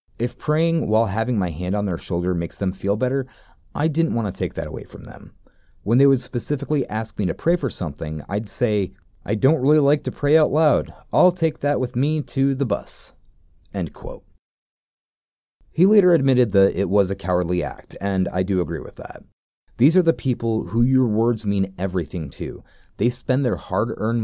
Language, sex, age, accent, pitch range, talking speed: English, male, 30-49, American, 95-150 Hz, 195 wpm